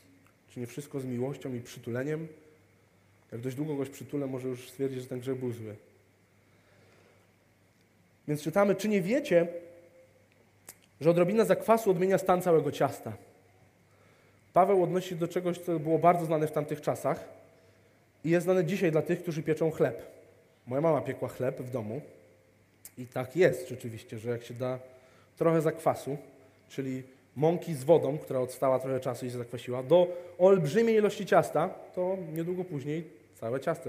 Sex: male